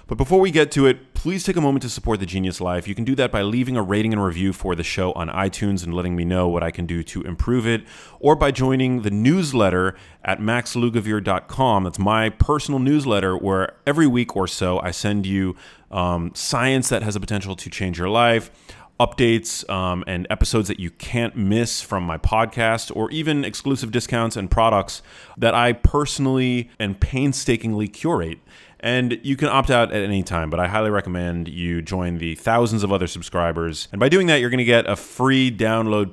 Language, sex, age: English, male, 30-49